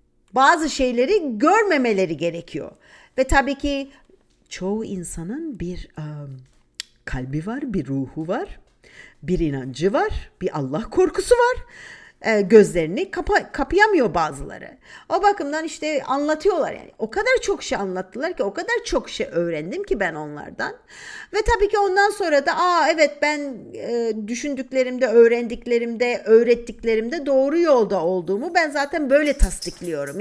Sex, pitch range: female, 195-315 Hz